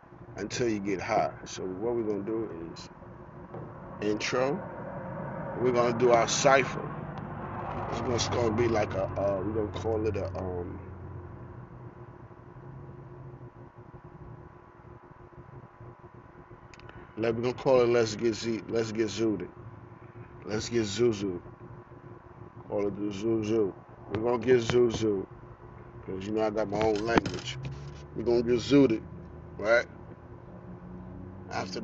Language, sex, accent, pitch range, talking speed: English, male, American, 100-120 Hz, 125 wpm